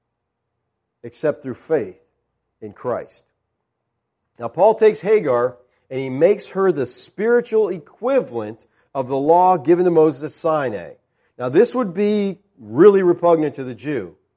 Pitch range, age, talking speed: 130-180 Hz, 40-59, 140 wpm